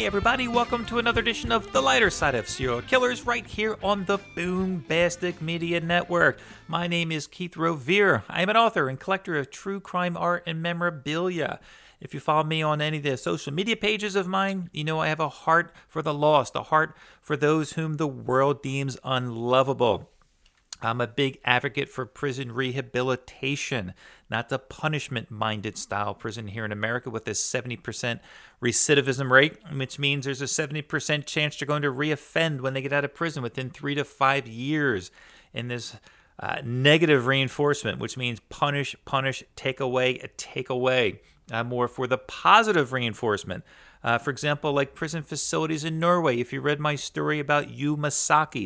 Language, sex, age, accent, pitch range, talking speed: English, male, 40-59, American, 130-165 Hz, 180 wpm